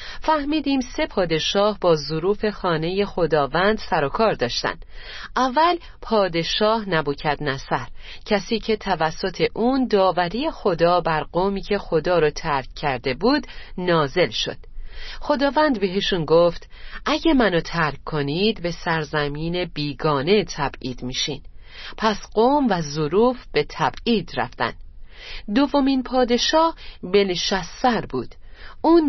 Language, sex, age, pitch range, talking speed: Persian, female, 40-59, 155-235 Hz, 115 wpm